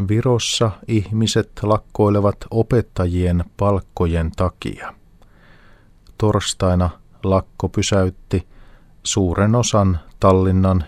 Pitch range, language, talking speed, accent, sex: 95-105 Hz, Finnish, 65 wpm, native, male